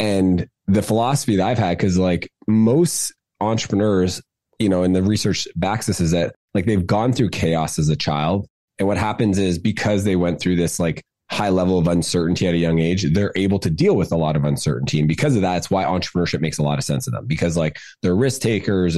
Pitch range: 85-105 Hz